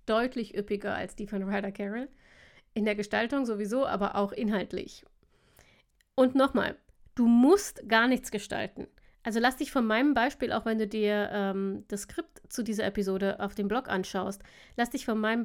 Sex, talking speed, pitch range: female, 175 wpm, 205-240 Hz